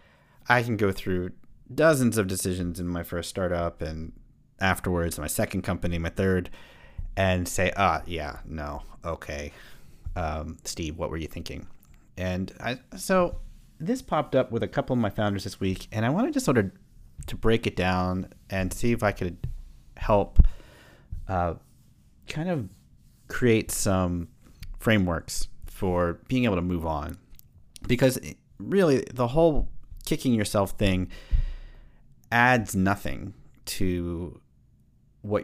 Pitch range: 85-110 Hz